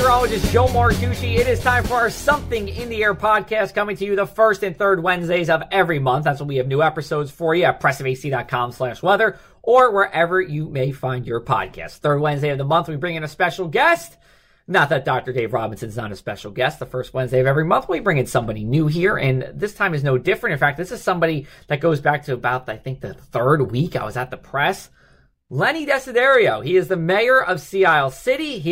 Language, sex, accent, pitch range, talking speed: English, male, American, 130-185 Hz, 230 wpm